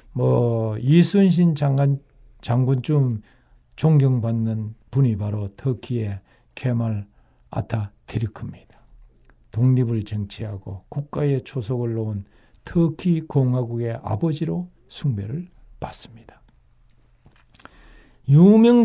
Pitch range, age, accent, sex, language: 120-165 Hz, 60-79, native, male, Korean